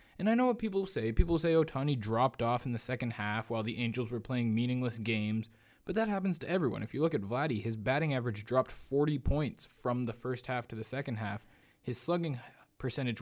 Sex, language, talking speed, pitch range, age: male, English, 220 wpm, 120-155 Hz, 20-39